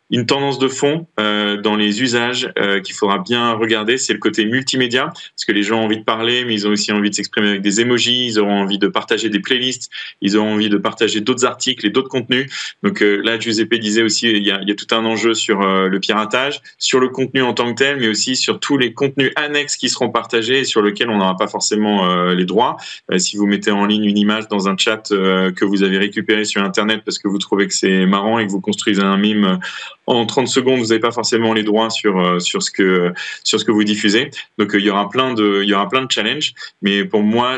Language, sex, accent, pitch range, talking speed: French, male, French, 100-120 Hz, 255 wpm